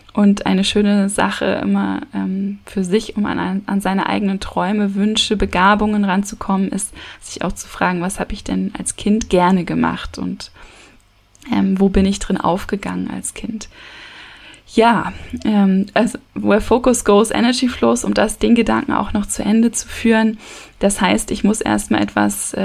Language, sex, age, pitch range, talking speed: German, female, 10-29, 185-230 Hz, 165 wpm